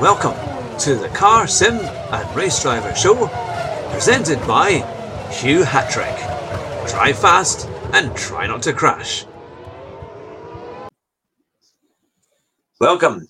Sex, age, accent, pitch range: male, 50-69, British, 125-170 Hz